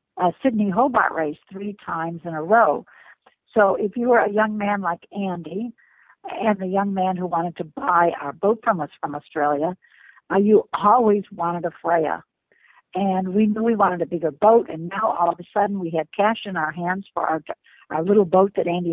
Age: 60-79